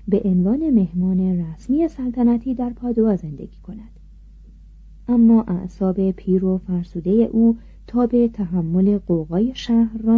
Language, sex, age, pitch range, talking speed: Persian, female, 40-59, 185-230 Hz, 120 wpm